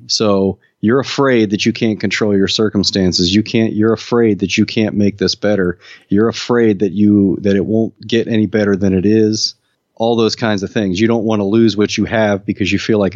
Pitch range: 100-110 Hz